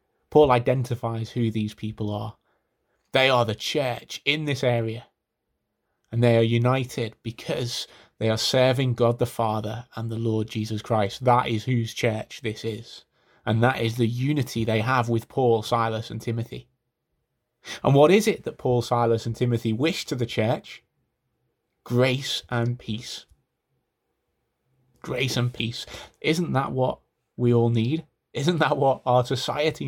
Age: 30-49